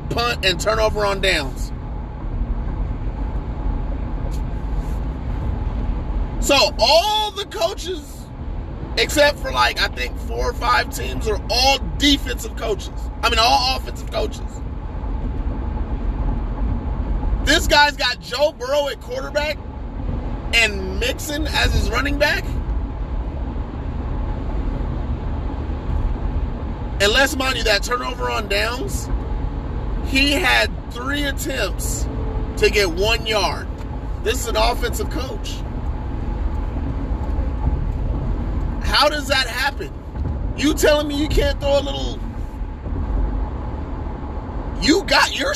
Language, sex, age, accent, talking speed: English, male, 30-49, American, 100 wpm